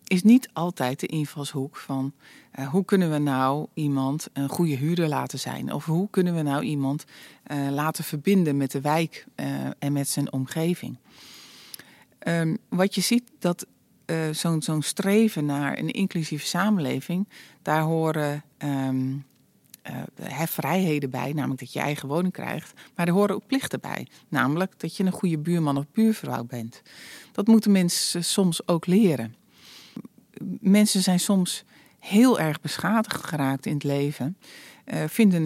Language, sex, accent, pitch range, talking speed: Dutch, female, Dutch, 140-190 Hz, 155 wpm